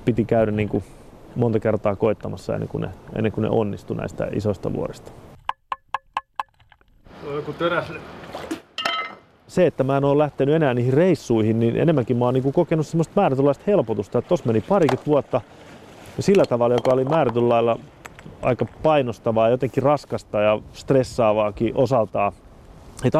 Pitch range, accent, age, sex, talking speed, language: 115-145 Hz, native, 30-49, male, 125 wpm, Finnish